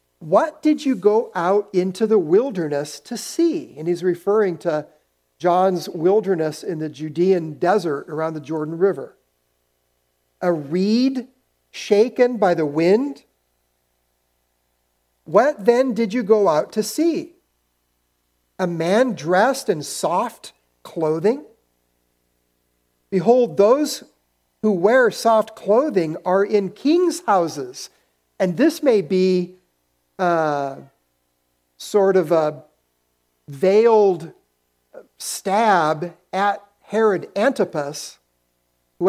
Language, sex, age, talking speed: English, male, 50-69, 105 wpm